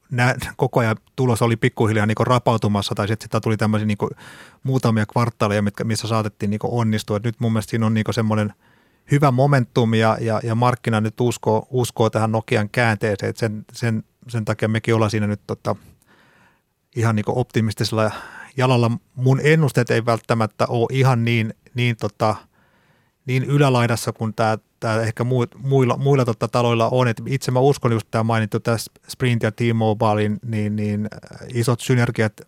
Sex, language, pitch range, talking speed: male, Finnish, 110-120 Hz, 160 wpm